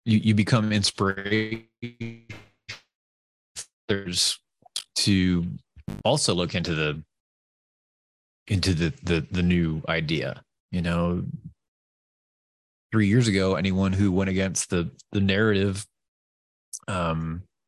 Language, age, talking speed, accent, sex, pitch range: English, 30-49, 95 wpm, American, male, 85-110 Hz